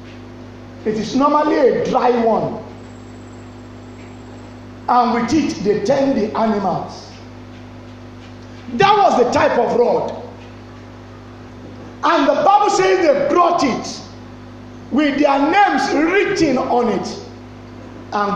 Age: 50-69